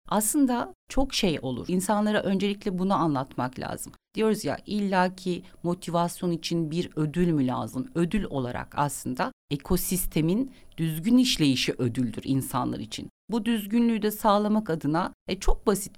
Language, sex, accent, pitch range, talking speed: Turkish, female, native, 140-200 Hz, 130 wpm